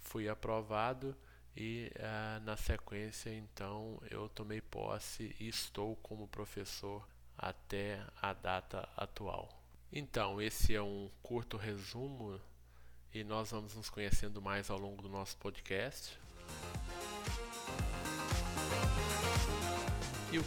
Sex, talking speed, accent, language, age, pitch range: male, 110 wpm, Brazilian, Portuguese, 20-39, 95-115 Hz